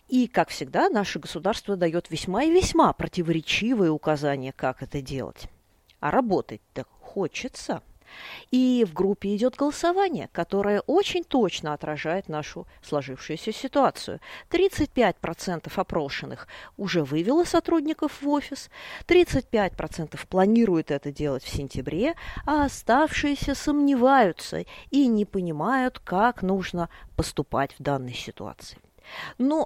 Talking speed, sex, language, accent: 115 wpm, female, Russian, native